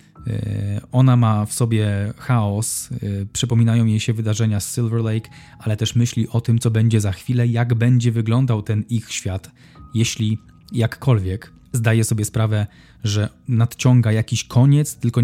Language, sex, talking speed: Polish, male, 145 wpm